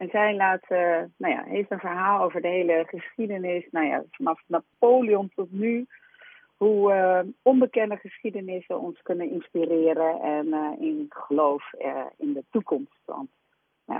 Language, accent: Dutch, Dutch